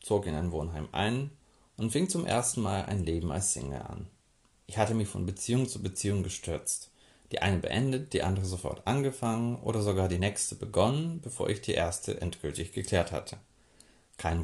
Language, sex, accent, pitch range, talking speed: German, male, German, 90-115 Hz, 180 wpm